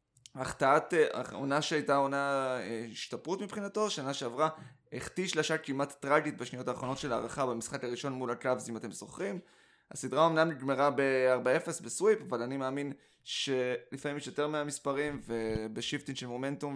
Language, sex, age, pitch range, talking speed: Hebrew, male, 20-39, 125-155 Hz, 140 wpm